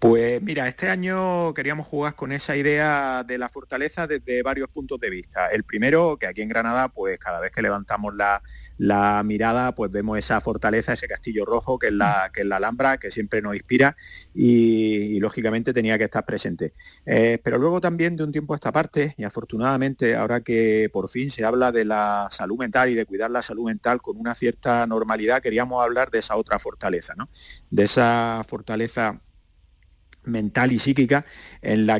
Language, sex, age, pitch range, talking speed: Spanish, male, 30-49, 105-130 Hz, 190 wpm